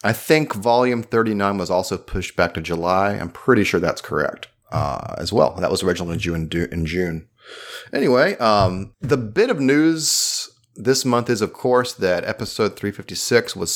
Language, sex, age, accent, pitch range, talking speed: English, male, 30-49, American, 90-120 Hz, 170 wpm